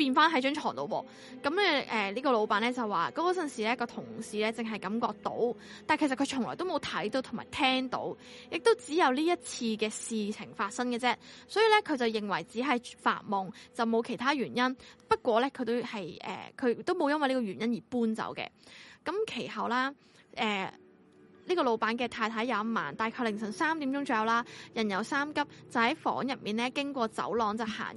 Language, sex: Chinese, female